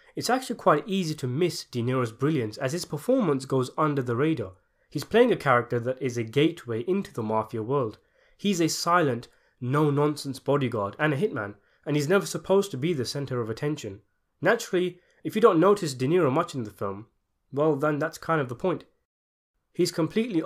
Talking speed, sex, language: 195 wpm, male, English